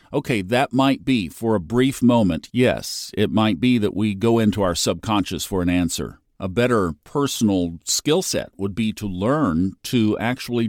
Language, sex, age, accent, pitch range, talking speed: English, male, 50-69, American, 95-125 Hz, 180 wpm